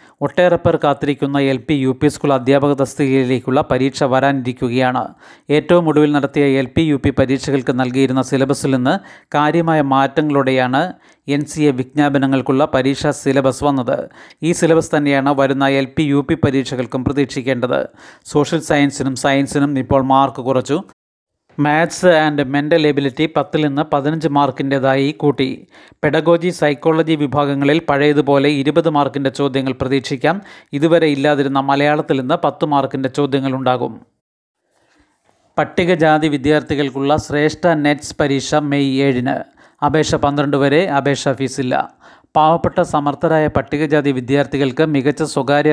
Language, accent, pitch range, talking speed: Malayalam, native, 140-155 Hz, 110 wpm